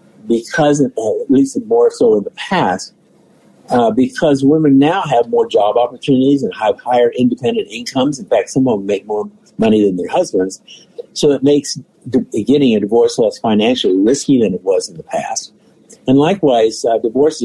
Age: 50-69